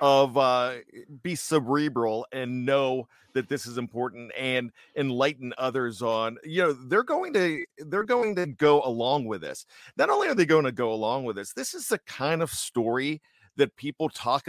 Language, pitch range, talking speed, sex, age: English, 130-185 Hz, 185 wpm, male, 40-59